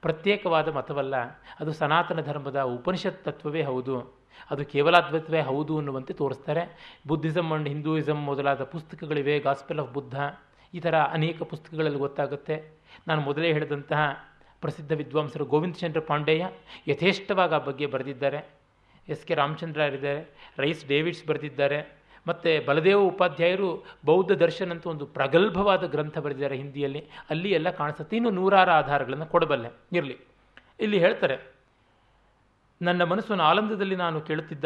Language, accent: Kannada, native